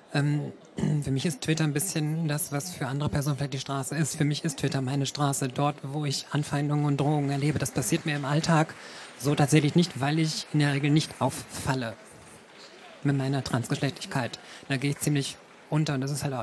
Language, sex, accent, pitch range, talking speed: German, male, German, 135-150 Hz, 205 wpm